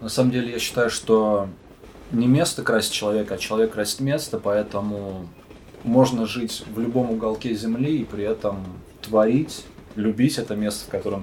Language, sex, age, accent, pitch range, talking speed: Russian, male, 20-39, native, 95-115 Hz, 160 wpm